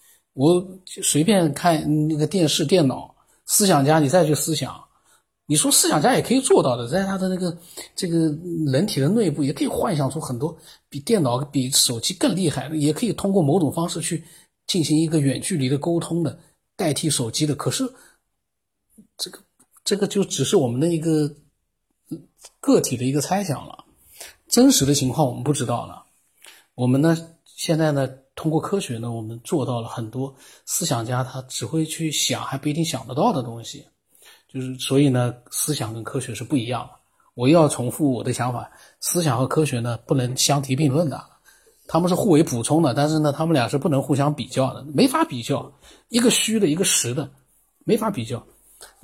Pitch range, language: 130-165 Hz, Chinese